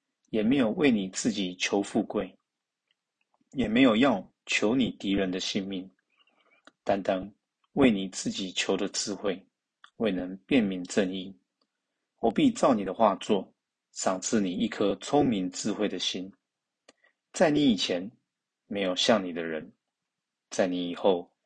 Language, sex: Chinese, male